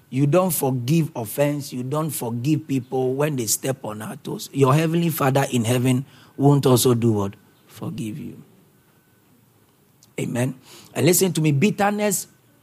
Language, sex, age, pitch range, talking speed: English, male, 50-69, 130-175 Hz, 145 wpm